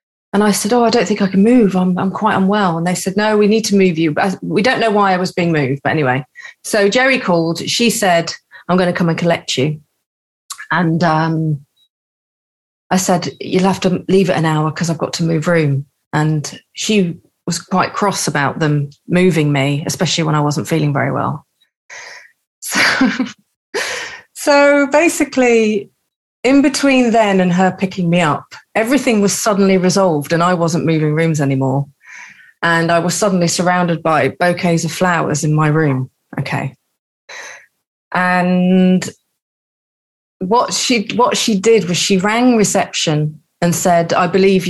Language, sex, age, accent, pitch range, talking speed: English, female, 40-59, British, 160-200 Hz, 170 wpm